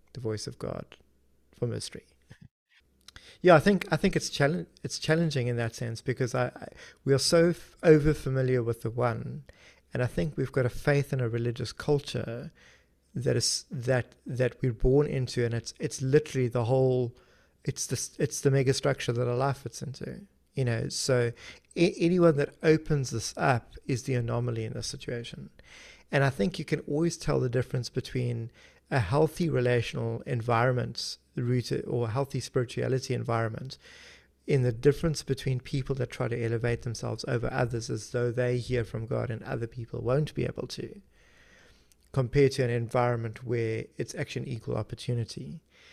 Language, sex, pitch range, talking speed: English, male, 120-140 Hz, 170 wpm